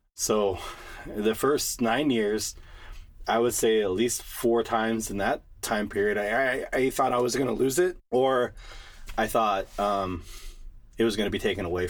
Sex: male